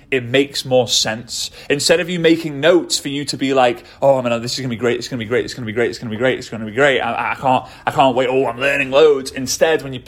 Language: English